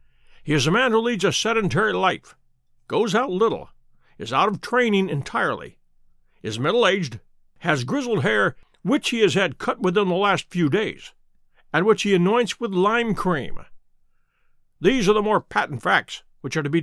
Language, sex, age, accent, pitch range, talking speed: English, male, 60-79, American, 145-210 Hz, 175 wpm